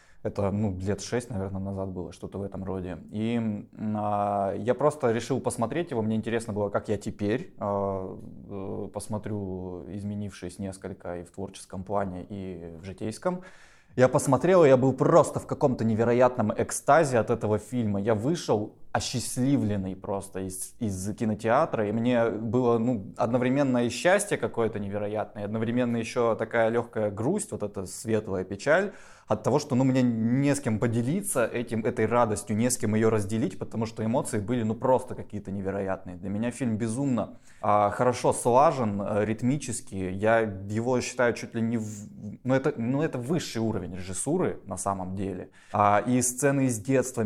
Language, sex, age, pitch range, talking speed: Russian, male, 20-39, 100-120 Hz, 165 wpm